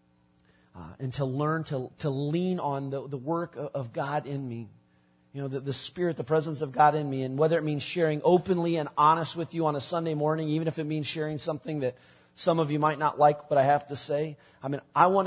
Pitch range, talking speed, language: 120-155 Hz, 250 wpm, English